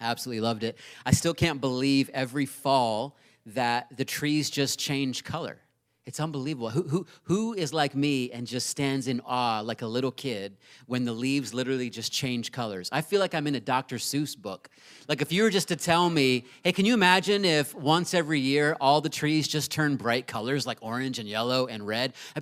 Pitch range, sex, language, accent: 125-150 Hz, male, English, American